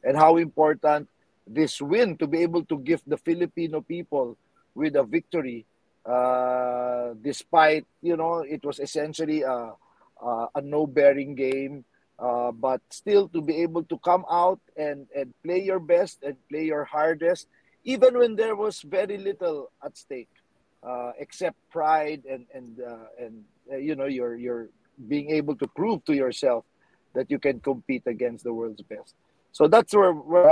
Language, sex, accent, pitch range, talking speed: English, male, Filipino, 130-165 Hz, 165 wpm